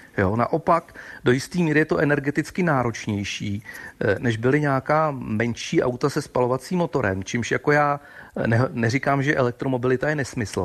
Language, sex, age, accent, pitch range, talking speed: Czech, male, 40-59, native, 120-155 Hz, 135 wpm